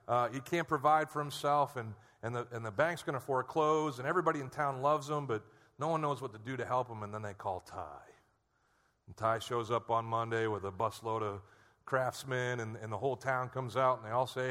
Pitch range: 115-150 Hz